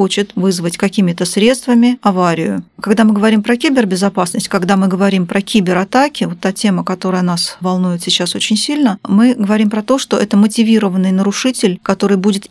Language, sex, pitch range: Russian, female, 185-215 Hz